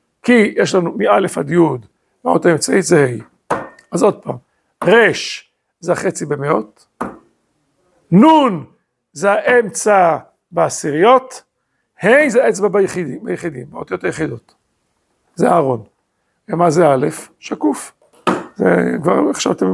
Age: 50-69